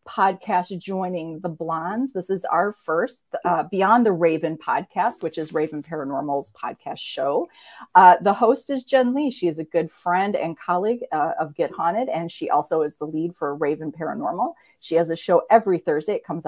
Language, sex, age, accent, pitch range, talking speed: English, female, 40-59, American, 160-225 Hz, 195 wpm